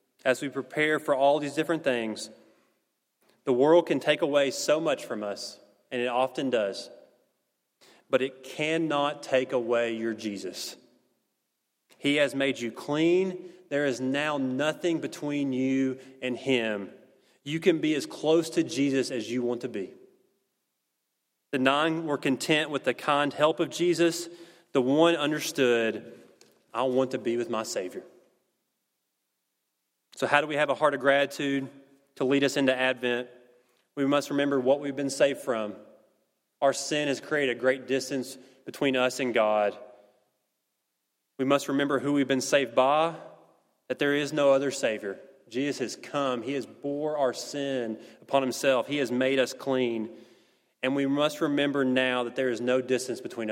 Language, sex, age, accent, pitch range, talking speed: English, male, 30-49, American, 125-145 Hz, 165 wpm